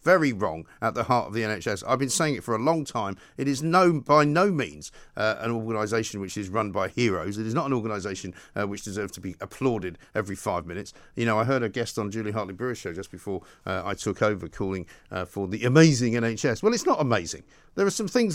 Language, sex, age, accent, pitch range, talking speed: English, male, 50-69, British, 115-185 Hz, 245 wpm